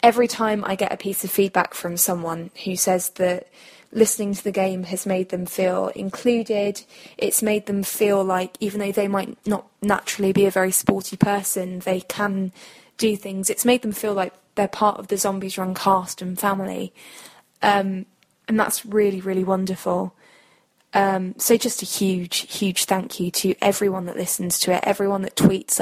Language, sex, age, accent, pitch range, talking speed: English, female, 10-29, British, 190-220 Hz, 185 wpm